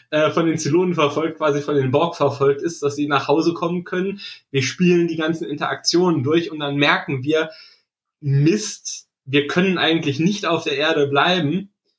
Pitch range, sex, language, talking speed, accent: 140-165 Hz, male, German, 175 wpm, German